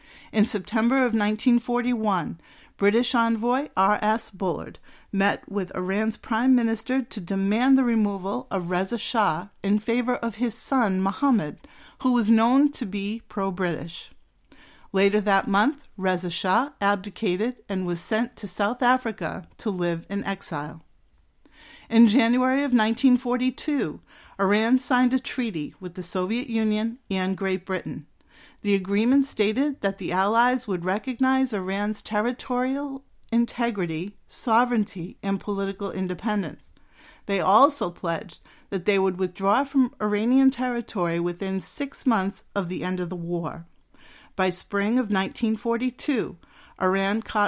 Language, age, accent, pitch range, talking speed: English, 50-69, American, 190-240 Hz, 130 wpm